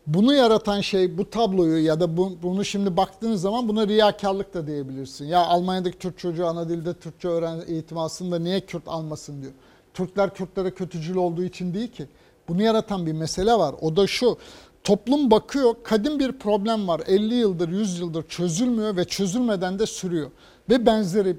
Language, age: Turkish, 60-79